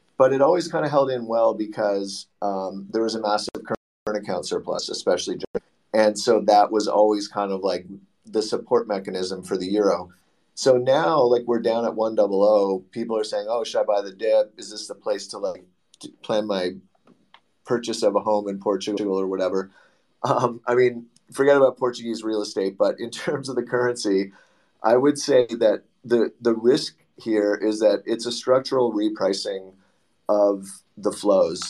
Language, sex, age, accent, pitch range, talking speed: English, male, 30-49, American, 100-120 Hz, 180 wpm